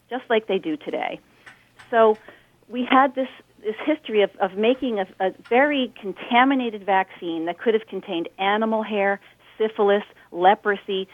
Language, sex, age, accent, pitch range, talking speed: English, female, 40-59, American, 185-230 Hz, 145 wpm